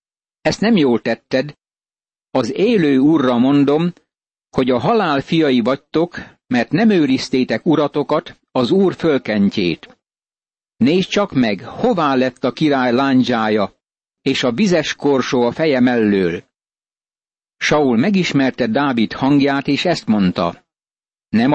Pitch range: 130-165 Hz